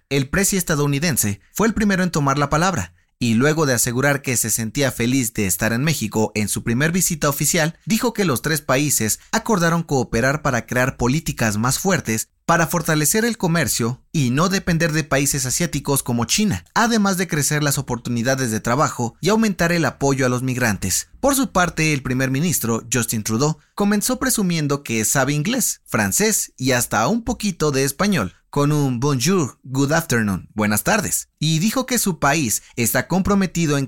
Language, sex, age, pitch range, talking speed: Spanish, male, 30-49, 120-170 Hz, 175 wpm